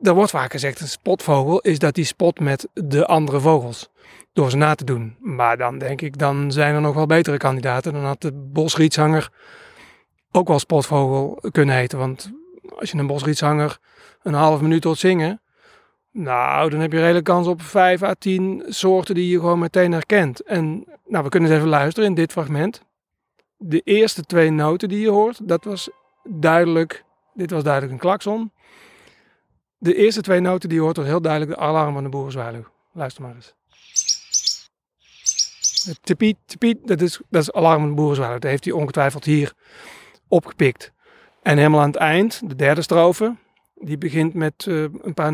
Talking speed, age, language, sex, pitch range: 185 wpm, 30-49, Dutch, male, 145-180 Hz